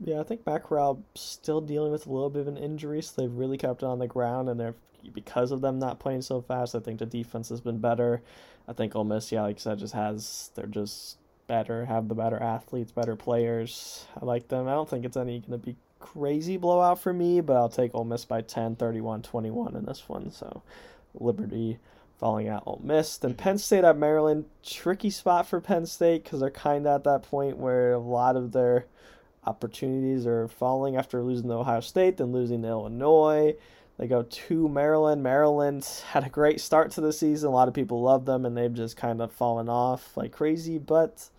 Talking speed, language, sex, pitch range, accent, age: 220 wpm, English, male, 120-150 Hz, American, 20-39